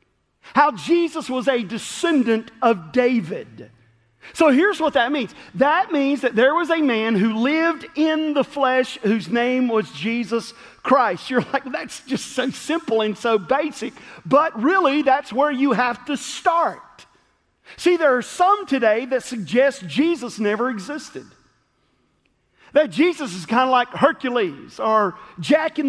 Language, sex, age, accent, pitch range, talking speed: English, male, 40-59, American, 230-300 Hz, 155 wpm